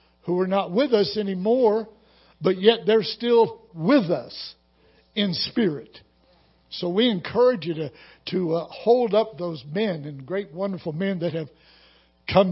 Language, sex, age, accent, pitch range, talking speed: English, male, 60-79, American, 180-250 Hz, 155 wpm